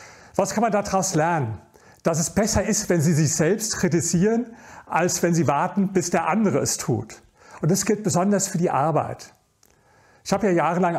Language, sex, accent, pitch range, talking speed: German, male, German, 160-195 Hz, 185 wpm